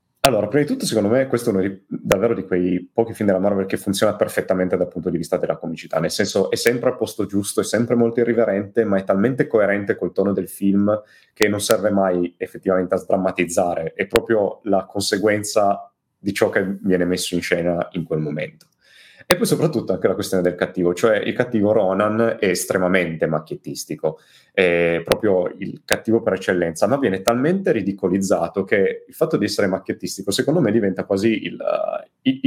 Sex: male